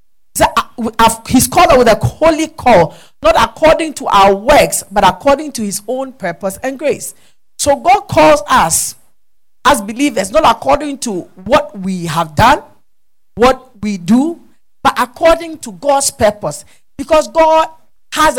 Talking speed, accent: 145 wpm, Nigerian